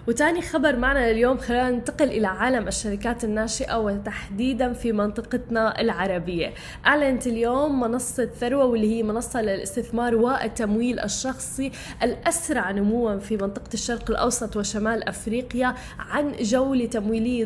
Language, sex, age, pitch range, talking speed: Arabic, female, 10-29, 220-250 Hz, 120 wpm